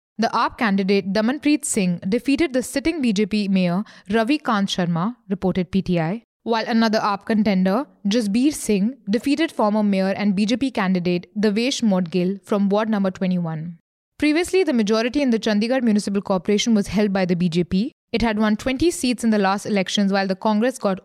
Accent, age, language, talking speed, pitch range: Indian, 20-39, English, 170 wpm, 195-245 Hz